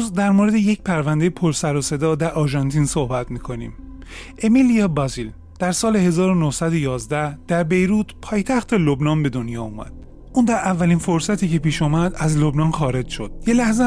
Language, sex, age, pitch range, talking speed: Persian, male, 30-49, 145-210 Hz, 160 wpm